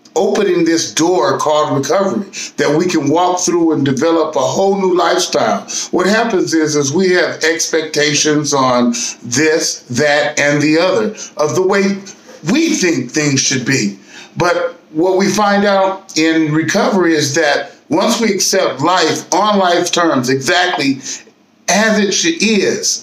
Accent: American